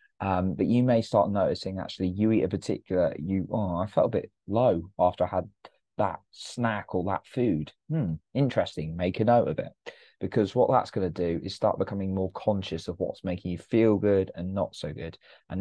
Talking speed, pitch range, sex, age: 210 wpm, 90-105 Hz, male, 20-39